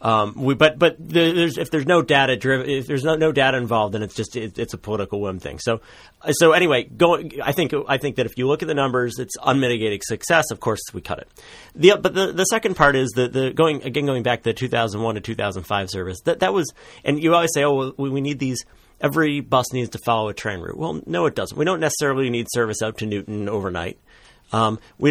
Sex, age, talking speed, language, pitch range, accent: male, 40-59, 245 wpm, English, 110-140 Hz, American